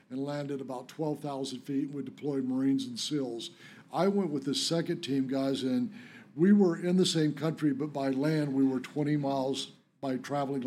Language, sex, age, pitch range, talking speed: English, male, 60-79, 135-155 Hz, 185 wpm